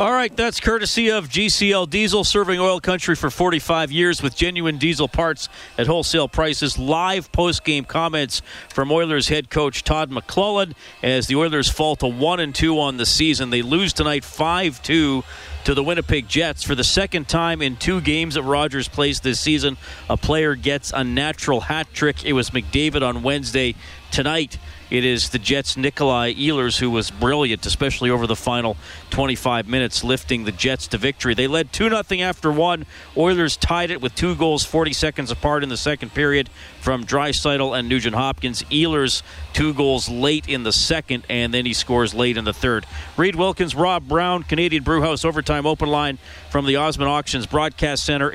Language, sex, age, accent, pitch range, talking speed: English, male, 40-59, American, 125-160 Hz, 180 wpm